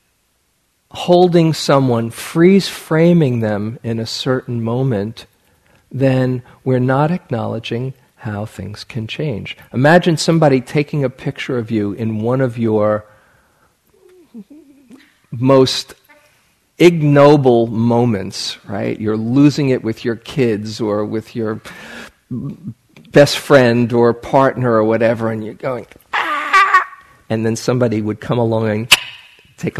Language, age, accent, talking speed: English, 50-69, American, 115 wpm